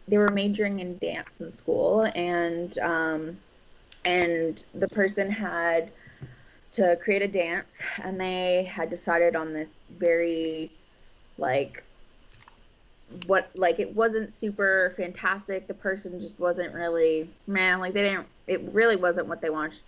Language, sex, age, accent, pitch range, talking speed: English, female, 20-39, American, 165-195 Hz, 140 wpm